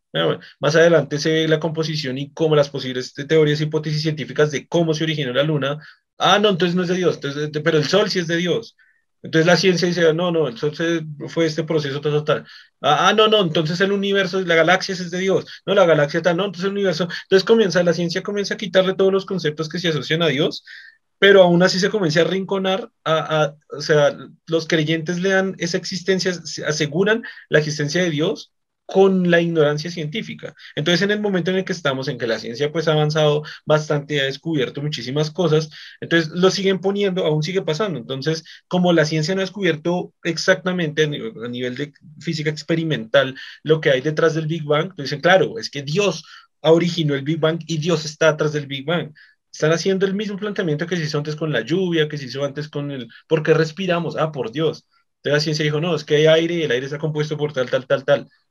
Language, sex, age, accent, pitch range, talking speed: Spanish, male, 30-49, Colombian, 150-185 Hz, 225 wpm